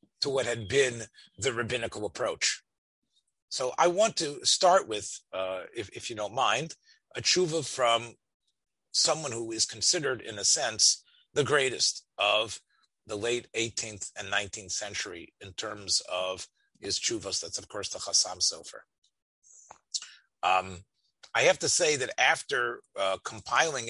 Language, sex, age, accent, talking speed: English, male, 30-49, American, 145 wpm